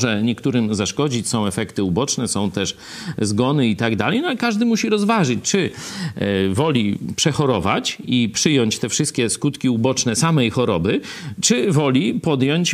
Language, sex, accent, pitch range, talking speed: Polish, male, native, 115-160 Hz, 145 wpm